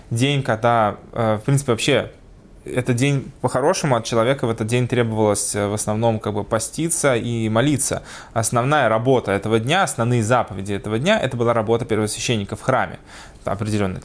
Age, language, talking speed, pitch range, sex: 20-39, Russian, 155 wpm, 110-140 Hz, male